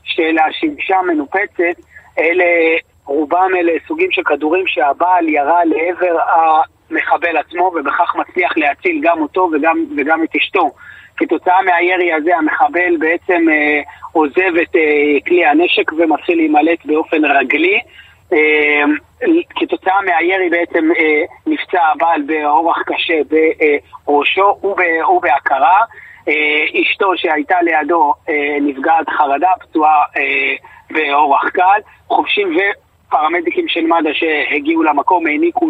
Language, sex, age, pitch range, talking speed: Hebrew, male, 30-49, 155-200 Hz, 110 wpm